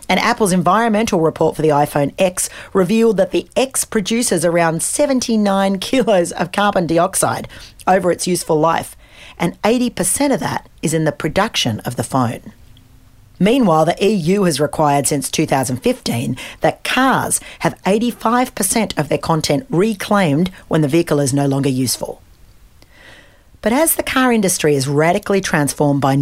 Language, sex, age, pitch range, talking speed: English, female, 40-59, 150-220 Hz, 150 wpm